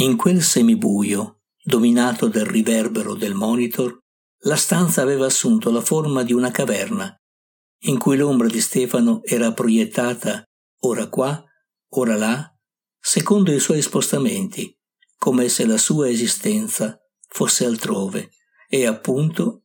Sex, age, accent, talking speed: male, 60-79, native, 125 wpm